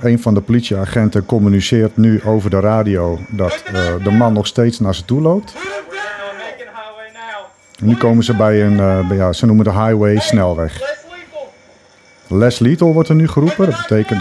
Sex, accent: male, Dutch